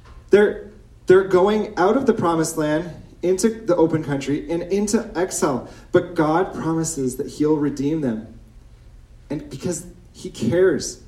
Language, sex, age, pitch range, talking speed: English, male, 30-49, 125-165 Hz, 140 wpm